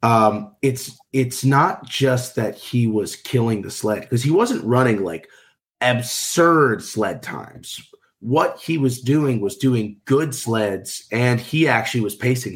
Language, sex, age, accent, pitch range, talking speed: English, male, 30-49, American, 110-130 Hz, 155 wpm